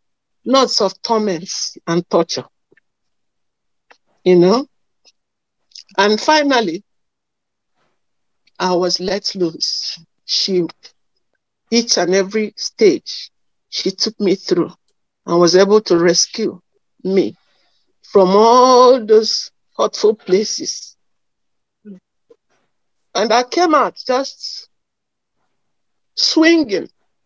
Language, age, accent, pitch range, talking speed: English, 60-79, Nigerian, 185-230 Hz, 85 wpm